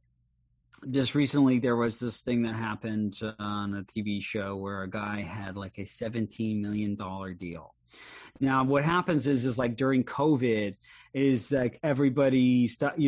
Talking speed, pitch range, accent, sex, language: 150 wpm, 105-140 Hz, American, male, English